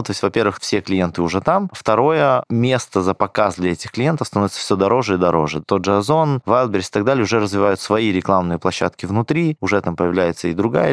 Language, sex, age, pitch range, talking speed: Russian, male, 20-39, 95-120 Hz, 205 wpm